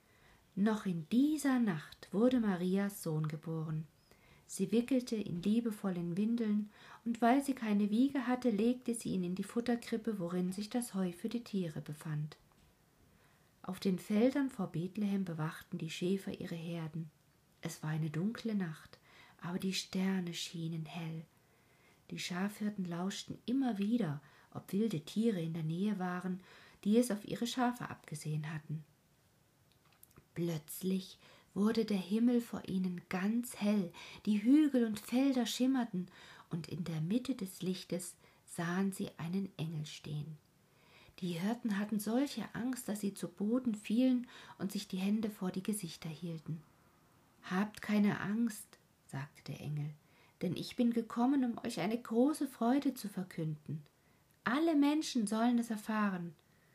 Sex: female